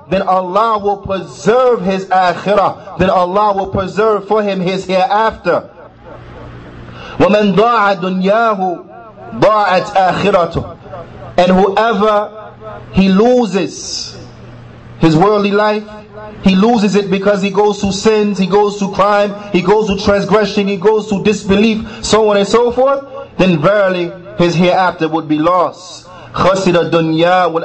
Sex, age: male, 30-49